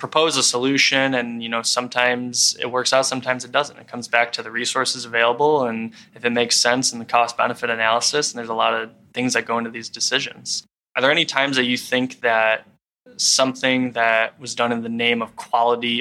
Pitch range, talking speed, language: 115-130 Hz, 215 wpm, English